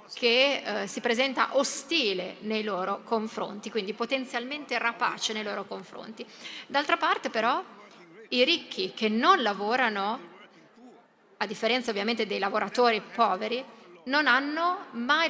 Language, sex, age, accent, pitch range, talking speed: Italian, female, 30-49, native, 220-280 Hz, 120 wpm